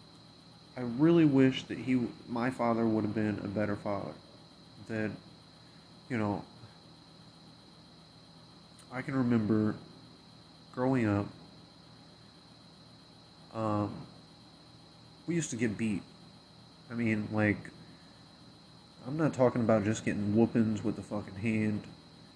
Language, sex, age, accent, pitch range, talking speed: English, male, 30-49, American, 105-130 Hz, 110 wpm